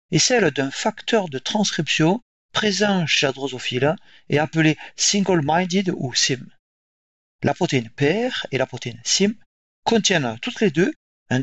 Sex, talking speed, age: male, 140 wpm, 40-59